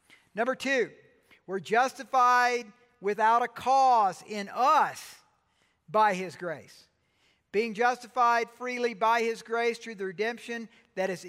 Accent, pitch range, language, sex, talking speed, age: American, 190-245 Hz, English, male, 120 wpm, 50-69